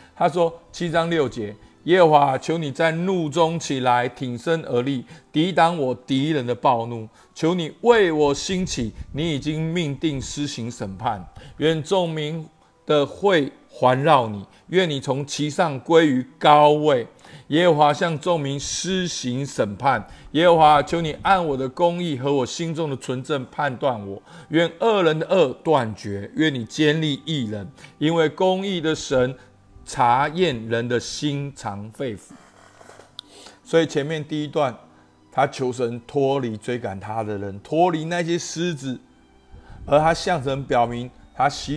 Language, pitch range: Chinese, 125-165 Hz